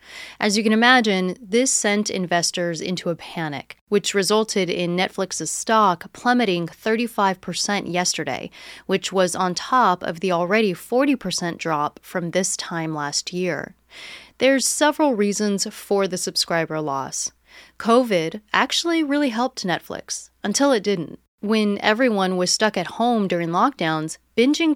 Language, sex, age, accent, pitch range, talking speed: English, female, 30-49, American, 175-220 Hz, 135 wpm